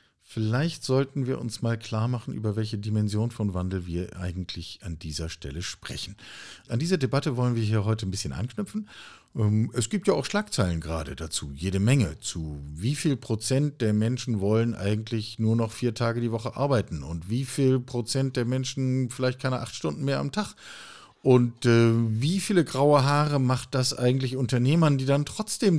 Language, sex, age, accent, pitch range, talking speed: German, male, 50-69, German, 95-130 Hz, 180 wpm